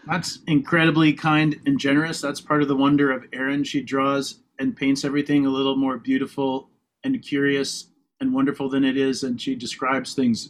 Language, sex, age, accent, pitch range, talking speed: English, male, 30-49, American, 130-150 Hz, 185 wpm